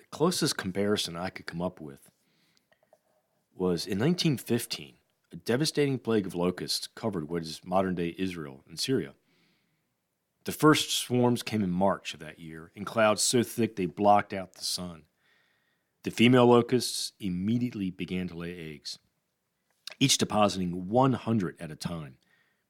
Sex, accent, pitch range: male, American, 90-120 Hz